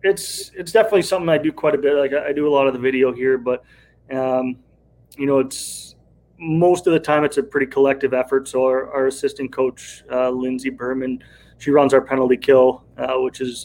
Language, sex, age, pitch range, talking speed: English, male, 20-39, 125-145 Hz, 220 wpm